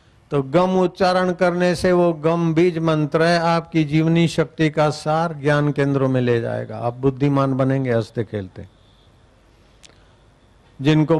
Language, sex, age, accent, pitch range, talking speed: Hindi, male, 50-69, native, 120-160 Hz, 140 wpm